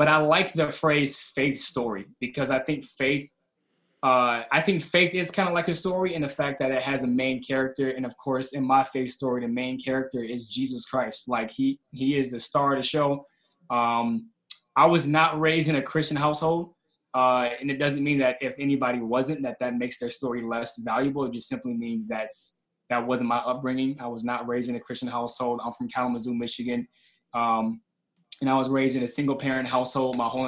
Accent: American